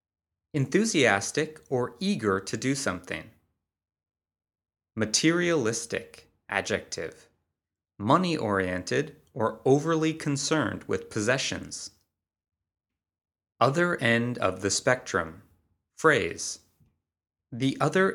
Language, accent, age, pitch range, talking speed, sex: English, American, 30-49, 95-140 Hz, 75 wpm, male